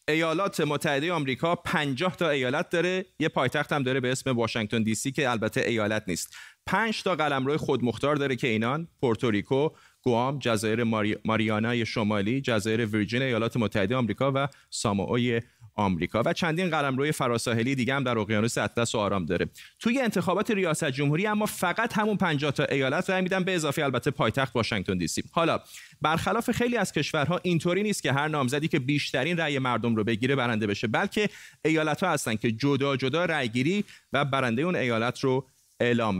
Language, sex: Persian, male